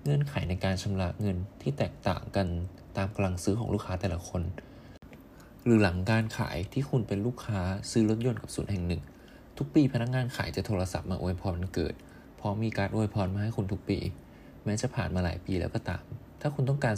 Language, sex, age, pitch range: Thai, male, 20-39, 95-120 Hz